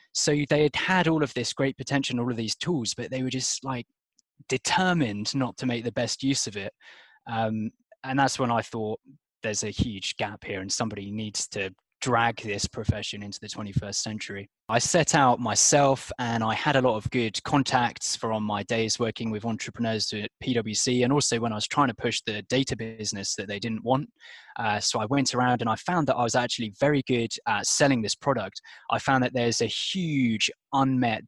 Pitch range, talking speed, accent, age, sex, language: 110-130 Hz, 210 wpm, British, 20-39, male, English